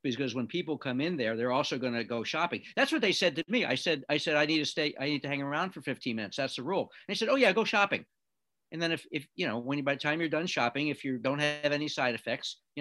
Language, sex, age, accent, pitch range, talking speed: English, male, 60-79, American, 125-175 Hz, 310 wpm